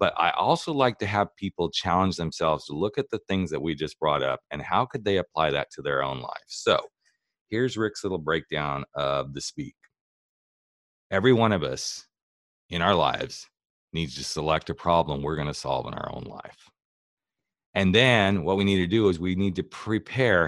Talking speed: 200 wpm